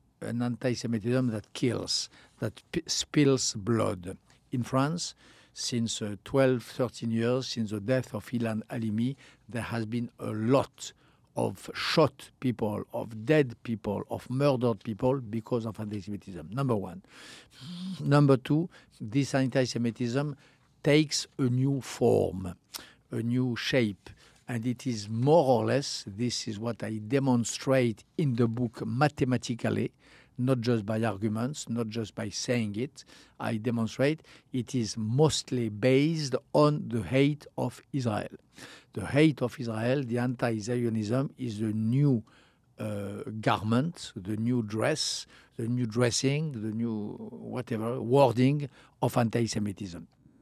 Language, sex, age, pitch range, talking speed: English, male, 60-79, 110-135 Hz, 130 wpm